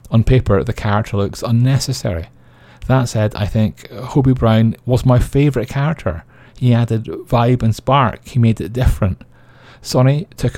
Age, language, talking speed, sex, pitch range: 30-49, English, 155 wpm, male, 105-125 Hz